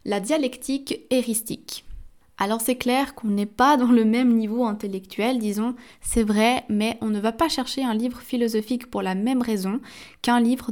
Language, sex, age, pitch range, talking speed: French, female, 20-39, 210-255 Hz, 180 wpm